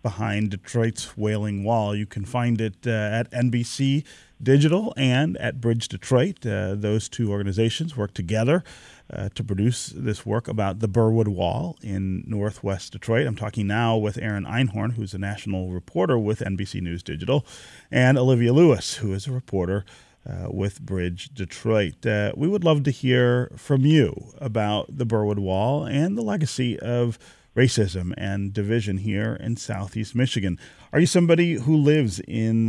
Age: 40-59